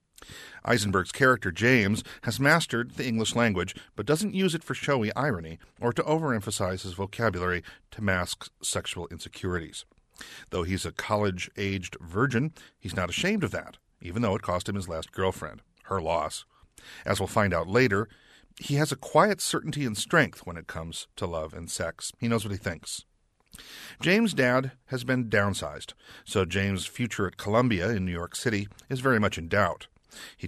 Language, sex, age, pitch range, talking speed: English, male, 40-59, 90-125 Hz, 175 wpm